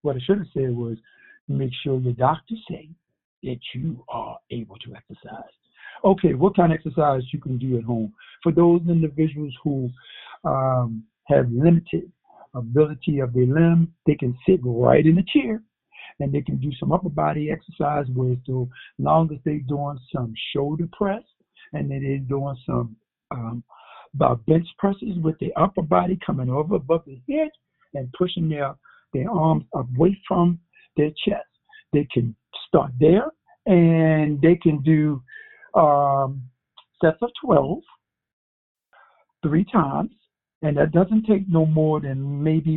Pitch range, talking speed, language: 140-175 Hz, 155 wpm, English